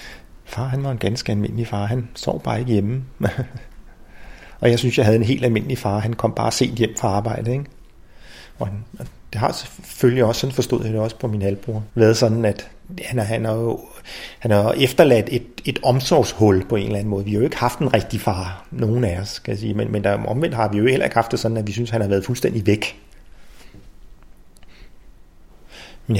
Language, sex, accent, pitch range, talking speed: Danish, male, native, 105-120 Hz, 200 wpm